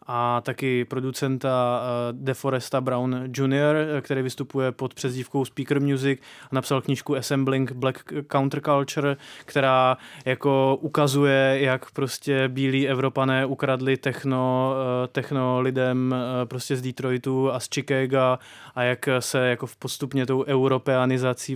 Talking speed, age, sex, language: 120 wpm, 20-39, male, Czech